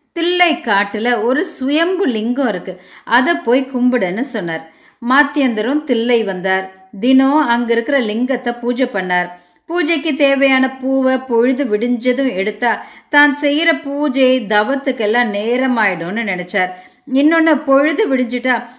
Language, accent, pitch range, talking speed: Tamil, native, 210-275 Hz, 100 wpm